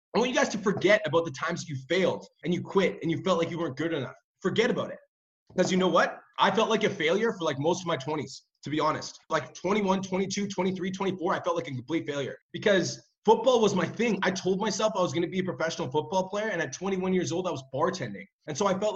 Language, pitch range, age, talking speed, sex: English, 165-210 Hz, 20-39, 265 wpm, male